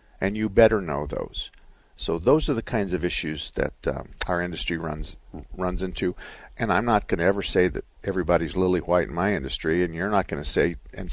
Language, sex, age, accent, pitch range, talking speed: English, male, 50-69, American, 80-110 Hz, 220 wpm